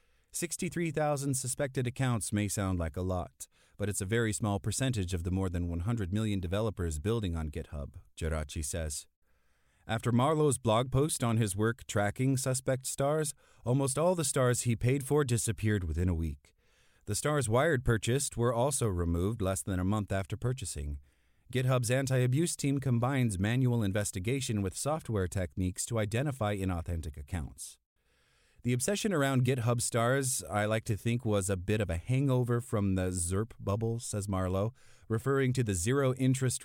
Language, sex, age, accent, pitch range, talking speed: English, male, 30-49, American, 90-125 Hz, 160 wpm